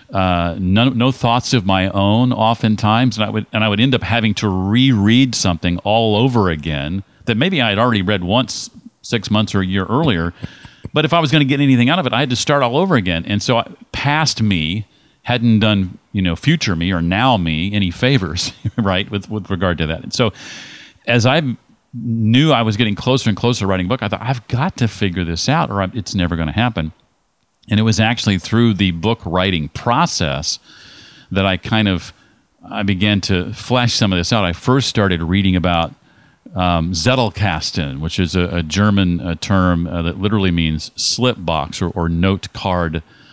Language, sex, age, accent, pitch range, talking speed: English, male, 40-59, American, 90-115 Hz, 205 wpm